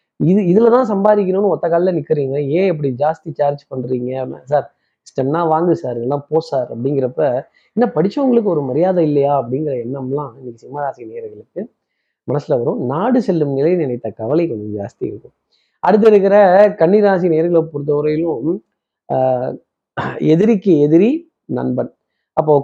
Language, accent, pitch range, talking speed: Tamil, native, 145-180 Hz, 125 wpm